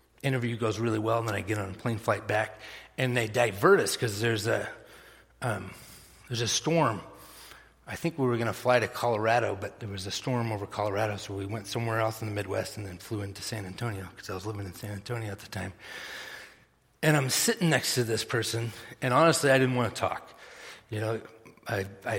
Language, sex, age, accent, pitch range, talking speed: English, male, 40-59, American, 105-125 Hz, 220 wpm